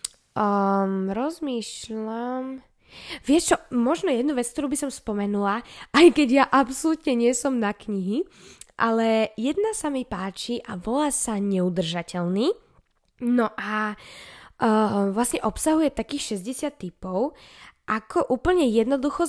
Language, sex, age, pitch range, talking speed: Slovak, female, 10-29, 210-270 Hz, 120 wpm